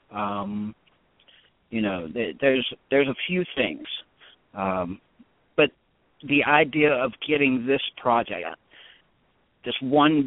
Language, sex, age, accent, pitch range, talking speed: English, male, 40-59, American, 110-140 Hz, 110 wpm